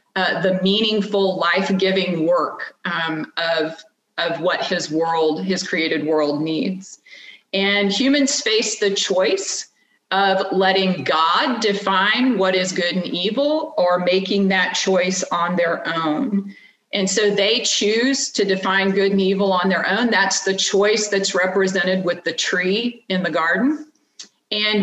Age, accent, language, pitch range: 40-59, American, English, 185-220 Hz